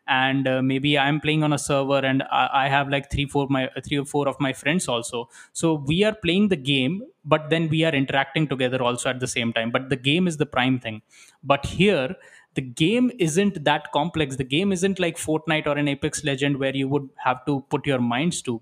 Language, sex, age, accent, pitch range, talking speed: Hindi, male, 20-39, native, 130-150 Hz, 240 wpm